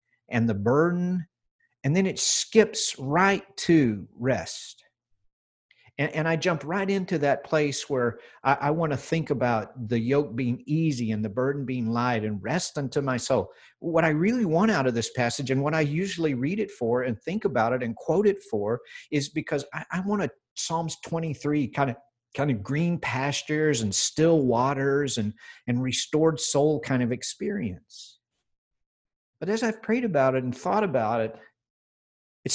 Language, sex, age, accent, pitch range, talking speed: English, male, 50-69, American, 120-165 Hz, 175 wpm